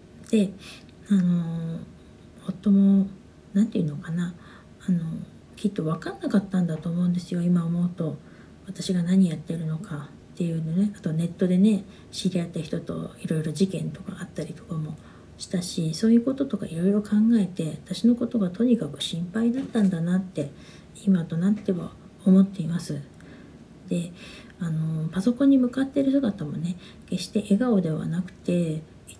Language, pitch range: Japanese, 170-210 Hz